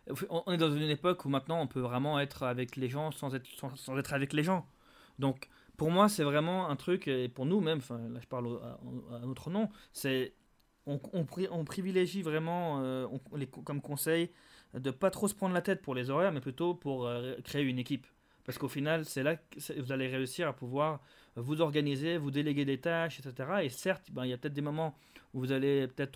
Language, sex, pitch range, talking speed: French, male, 130-165 Hz, 225 wpm